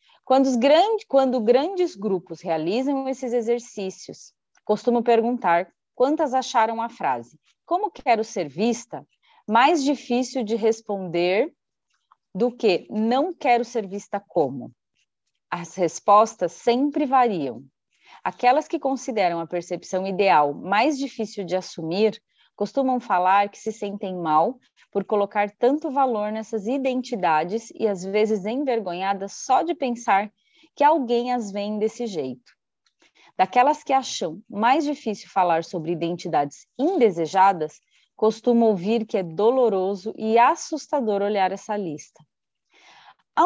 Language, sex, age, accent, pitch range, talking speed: Portuguese, female, 30-49, Brazilian, 195-260 Hz, 120 wpm